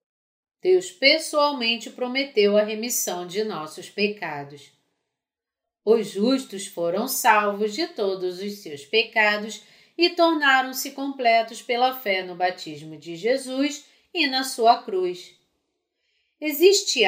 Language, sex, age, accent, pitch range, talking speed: Spanish, female, 40-59, Brazilian, 180-275 Hz, 110 wpm